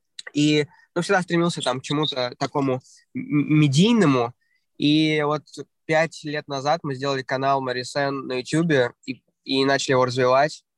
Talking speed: 140 wpm